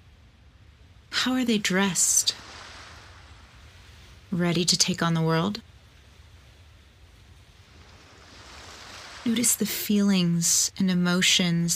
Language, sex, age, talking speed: English, female, 30-49, 75 wpm